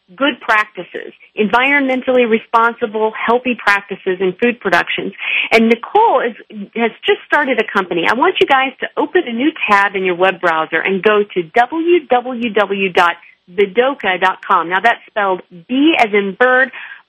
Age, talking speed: 40-59, 140 wpm